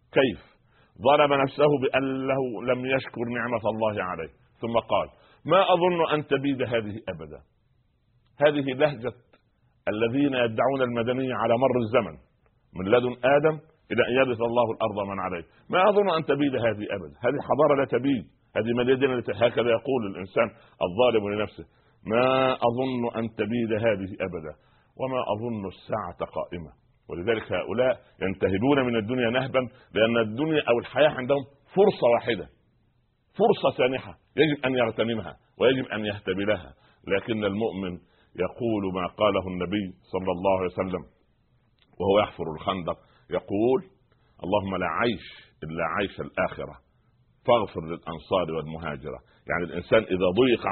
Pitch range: 100-130 Hz